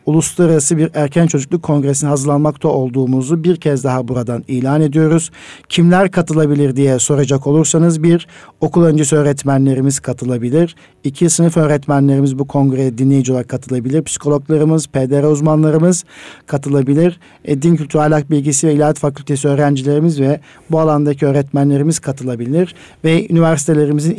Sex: male